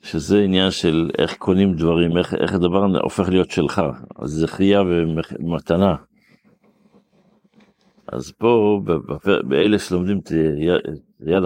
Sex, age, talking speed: male, 60-79, 105 wpm